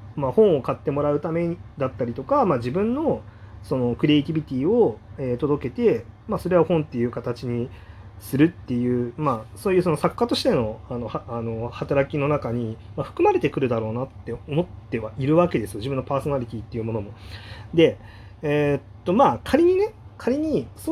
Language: Japanese